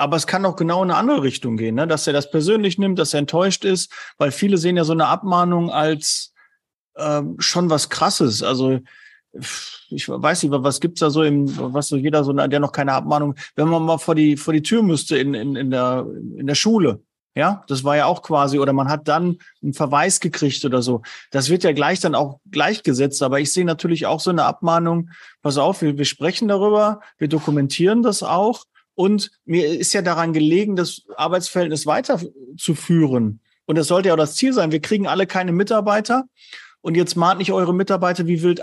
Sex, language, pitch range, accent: male, German, 150-195 Hz, German